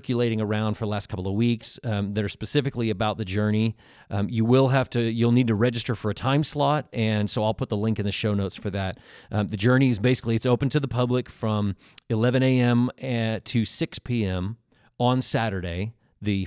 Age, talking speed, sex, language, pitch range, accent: 40-59, 220 wpm, male, English, 105-125 Hz, American